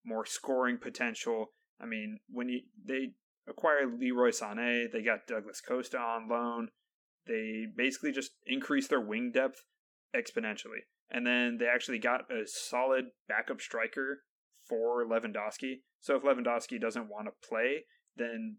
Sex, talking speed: male, 140 wpm